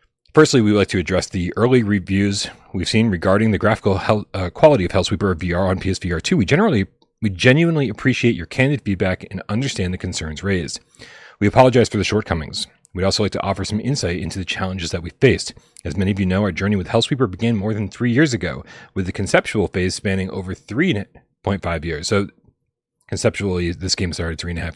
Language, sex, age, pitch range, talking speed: English, male, 30-49, 90-115 Hz, 210 wpm